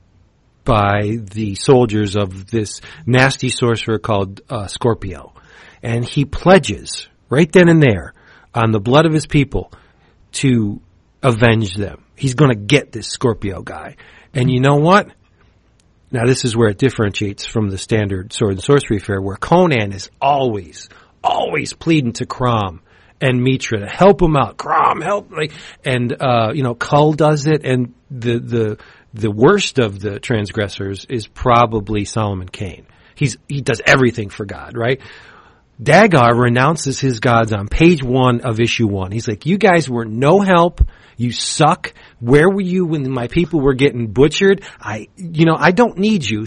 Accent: American